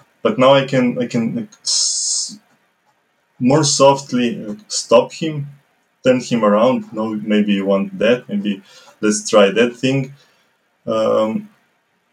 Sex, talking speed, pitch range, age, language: male, 120 wpm, 105-145 Hz, 20-39, English